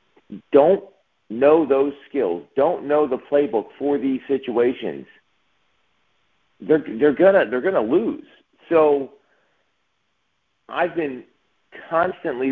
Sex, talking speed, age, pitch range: male, 95 wpm, 50-69, 115-145 Hz